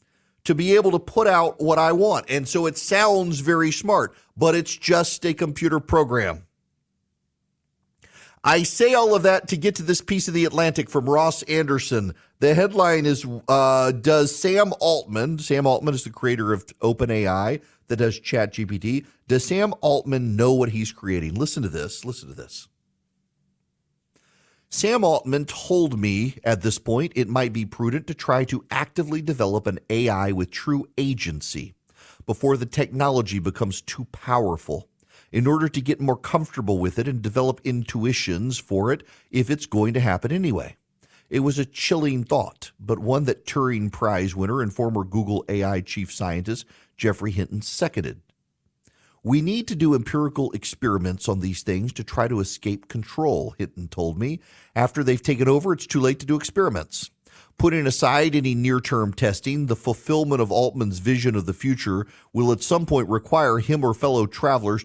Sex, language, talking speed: male, English, 170 wpm